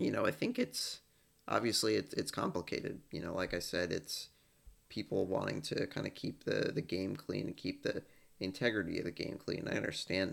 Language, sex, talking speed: English, male, 205 wpm